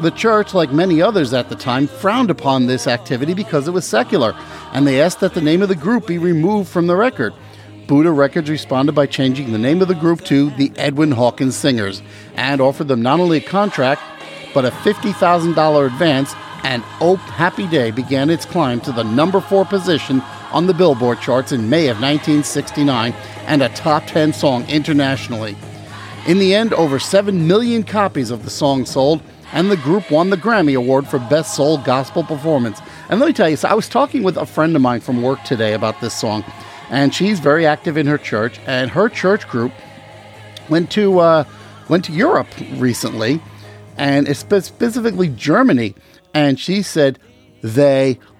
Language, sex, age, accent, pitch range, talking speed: English, male, 50-69, American, 125-165 Hz, 185 wpm